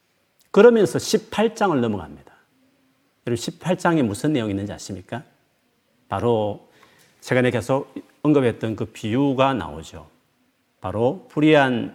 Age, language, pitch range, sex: 40-59, Korean, 110-165 Hz, male